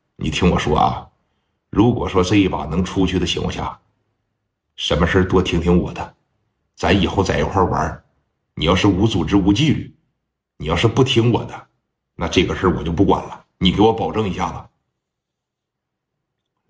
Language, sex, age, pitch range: Chinese, male, 50-69, 100-140 Hz